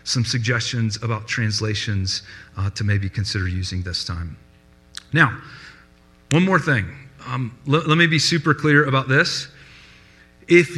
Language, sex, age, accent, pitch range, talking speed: English, male, 40-59, American, 90-140 Hz, 140 wpm